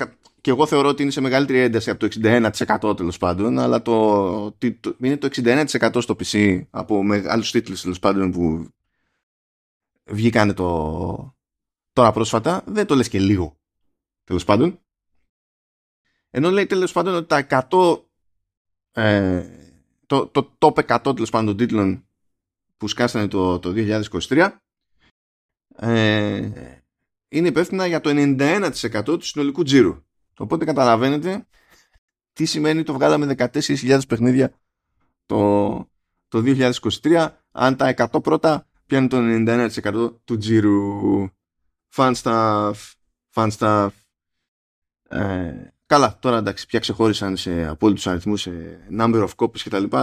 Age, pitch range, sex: 20-39, 95-135 Hz, male